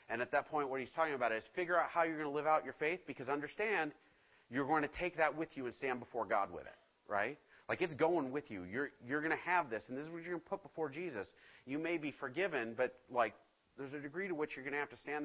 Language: English